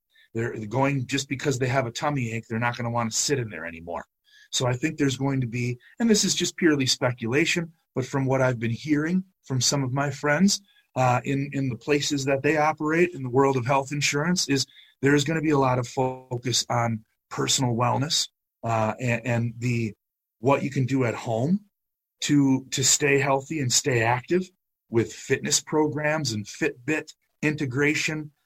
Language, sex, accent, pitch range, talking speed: English, male, American, 120-150 Hz, 195 wpm